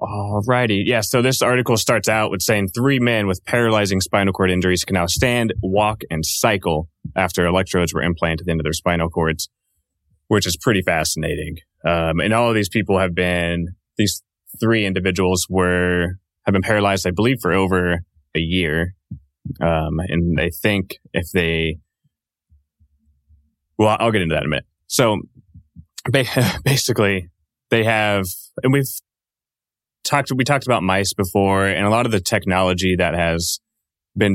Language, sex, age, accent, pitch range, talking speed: English, male, 20-39, American, 85-105 Hz, 160 wpm